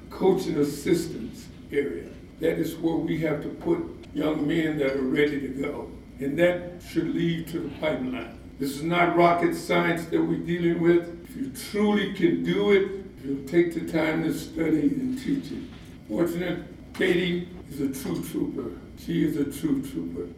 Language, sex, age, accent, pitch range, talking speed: English, male, 60-79, American, 150-185 Hz, 175 wpm